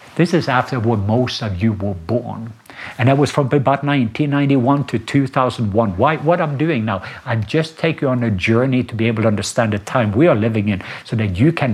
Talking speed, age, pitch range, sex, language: 220 wpm, 60-79, 110-130 Hz, male, English